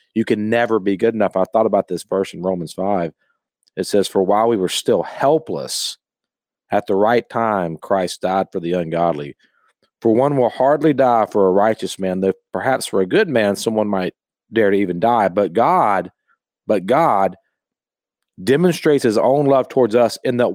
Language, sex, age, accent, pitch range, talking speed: English, male, 40-59, American, 100-125 Hz, 185 wpm